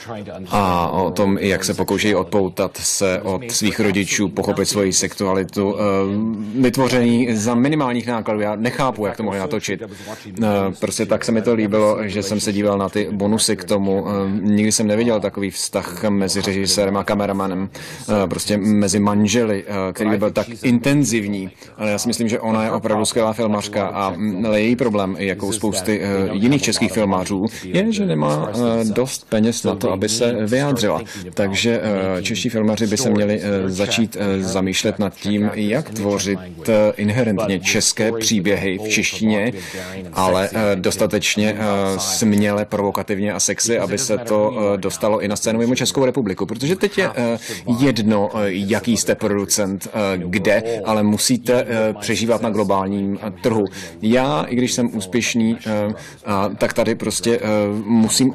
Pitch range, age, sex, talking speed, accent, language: 100-115 Hz, 30-49, male, 145 wpm, native, Czech